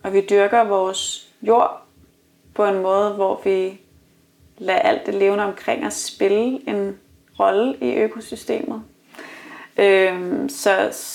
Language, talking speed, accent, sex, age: Danish, 120 wpm, native, female, 30-49